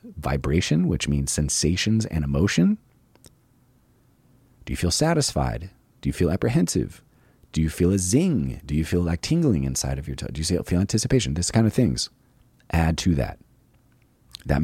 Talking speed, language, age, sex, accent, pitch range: 165 wpm, English, 30-49, male, American, 75-120 Hz